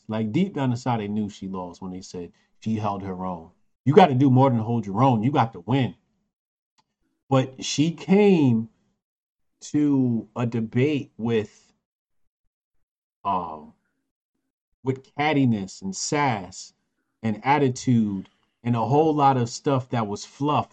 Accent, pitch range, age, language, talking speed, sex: American, 105-135 Hz, 40-59, English, 155 wpm, male